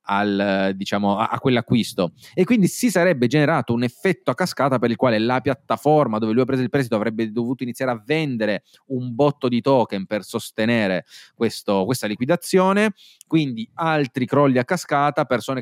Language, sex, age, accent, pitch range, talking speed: Italian, male, 30-49, native, 110-140 Hz, 175 wpm